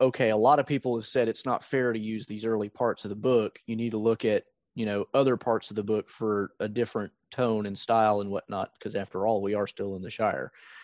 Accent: American